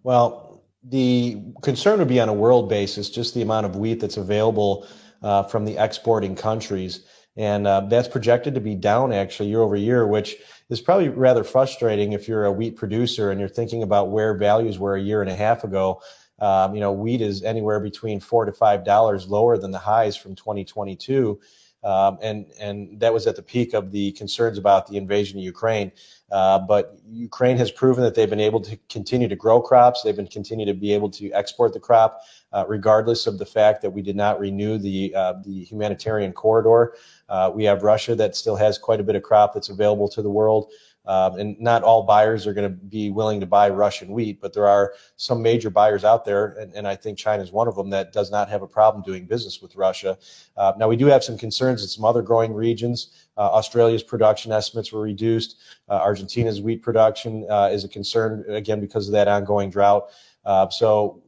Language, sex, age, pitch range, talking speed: English, male, 30-49, 100-115 Hz, 210 wpm